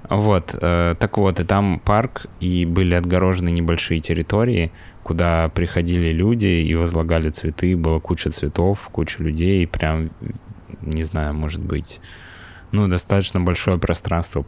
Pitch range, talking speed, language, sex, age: 80-95 Hz, 135 wpm, Russian, male, 20-39